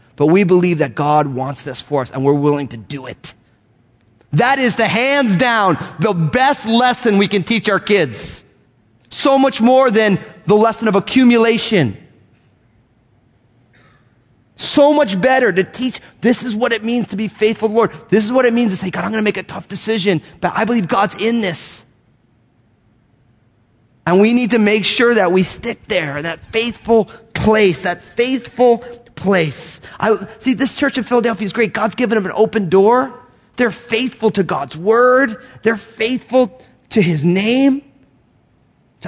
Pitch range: 150-230 Hz